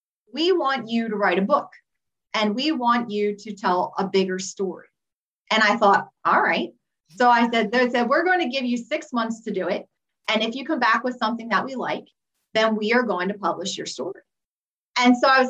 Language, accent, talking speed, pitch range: English, American, 225 wpm, 205-255 Hz